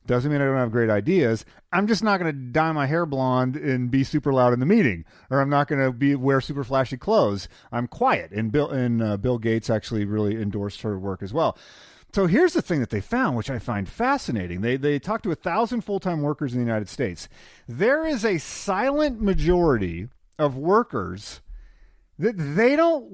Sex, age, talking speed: male, 40-59, 215 wpm